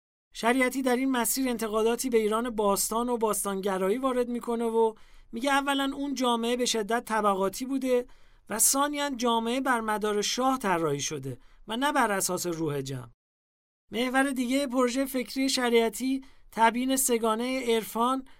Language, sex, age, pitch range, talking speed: English, male, 40-59, 200-255 Hz, 140 wpm